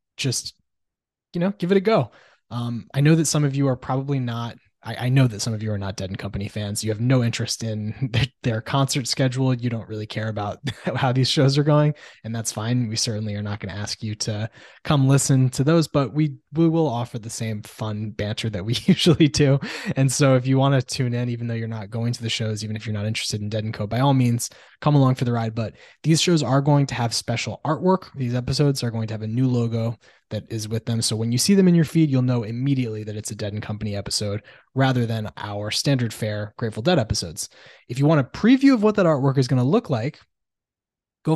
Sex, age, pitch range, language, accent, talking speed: male, 20-39, 110-135 Hz, English, American, 245 wpm